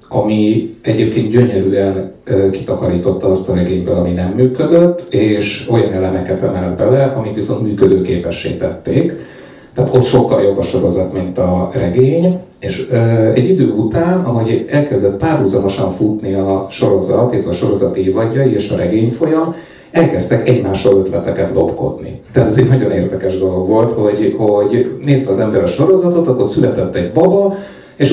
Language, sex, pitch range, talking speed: Hungarian, male, 100-140 Hz, 145 wpm